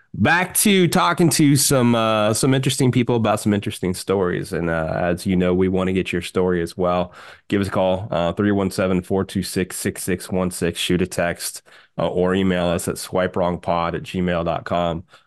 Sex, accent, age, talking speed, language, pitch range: male, American, 20-39, 170 wpm, English, 90-140 Hz